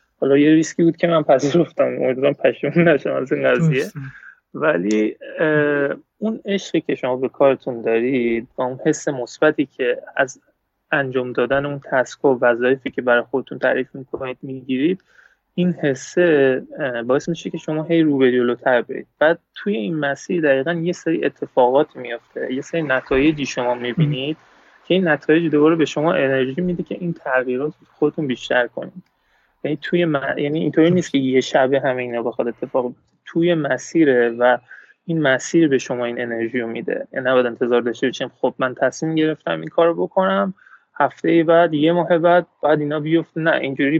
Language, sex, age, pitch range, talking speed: Persian, male, 20-39, 130-160 Hz, 165 wpm